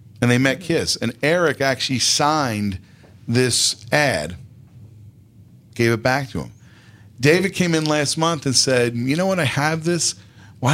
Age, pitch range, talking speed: 40-59, 110-150 Hz, 160 wpm